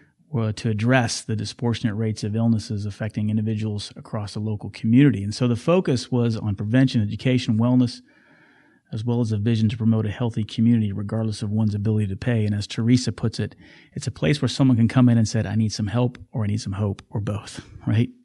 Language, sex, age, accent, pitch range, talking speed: English, male, 30-49, American, 110-125 Hz, 215 wpm